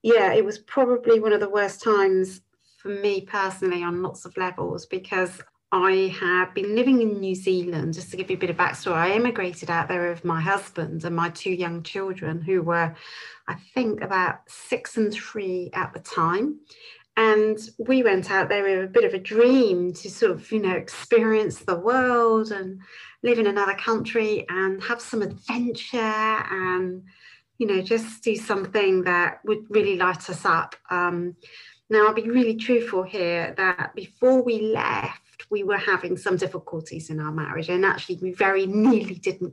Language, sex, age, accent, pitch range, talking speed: English, female, 40-59, British, 175-215 Hz, 180 wpm